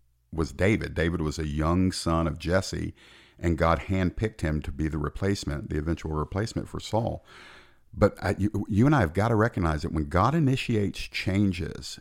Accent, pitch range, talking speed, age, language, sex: American, 80-100 Hz, 180 wpm, 50-69, English, male